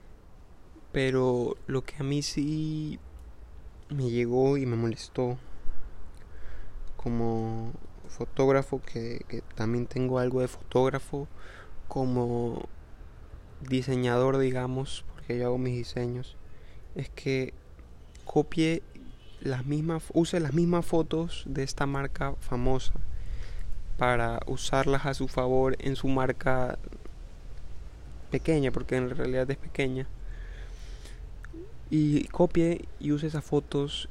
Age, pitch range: 20-39, 115-140 Hz